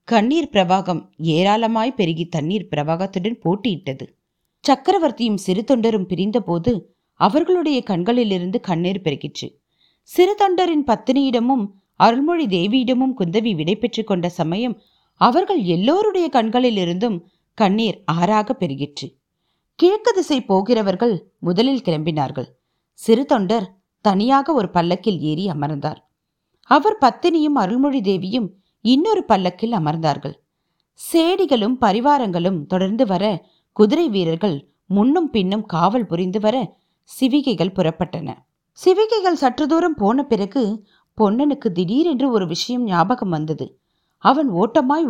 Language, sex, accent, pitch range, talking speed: Tamil, female, native, 180-260 Hz, 95 wpm